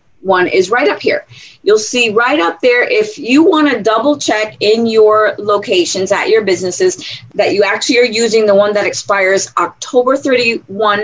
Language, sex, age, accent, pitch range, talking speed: English, female, 30-49, American, 195-255 Hz, 180 wpm